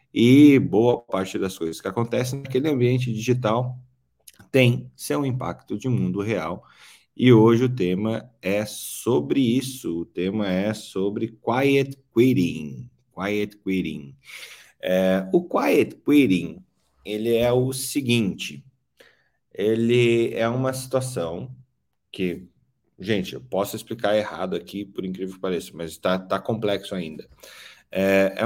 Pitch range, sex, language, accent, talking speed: 95-125 Hz, male, Portuguese, Brazilian, 120 wpm